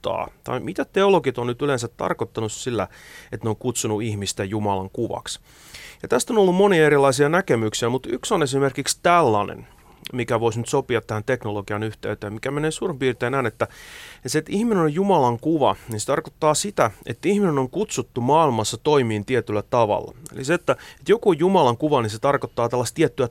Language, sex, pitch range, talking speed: Finnish, male, 110-150 Hz, 180 wpm